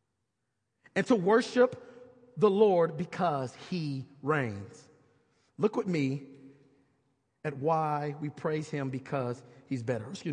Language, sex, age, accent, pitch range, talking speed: English, male, 40-59, American, 165-260 Hz, 115 wpm